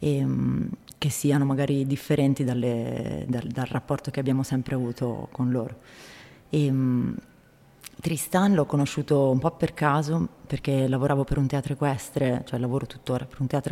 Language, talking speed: Italian, 140 wpm